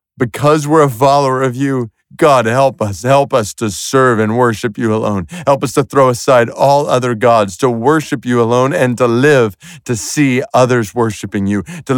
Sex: male